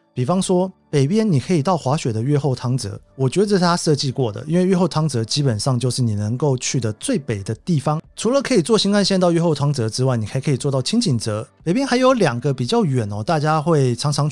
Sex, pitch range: male, 125-170 Hz